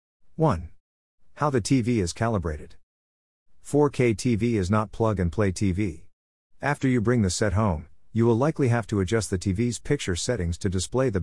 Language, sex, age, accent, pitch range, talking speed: English, male, 50-69, American, 85-120 Hz, 165 wpm